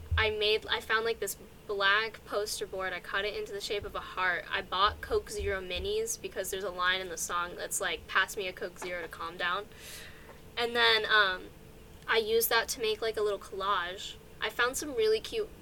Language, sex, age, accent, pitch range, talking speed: English, female, 10-29, American, 200-315 Hz, 220 wpm